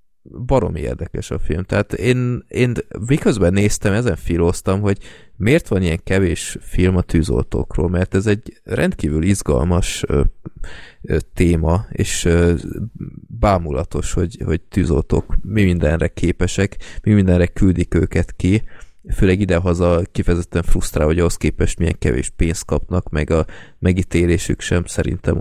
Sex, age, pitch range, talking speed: male, 20-39, 85-100 Hz, 135 wpm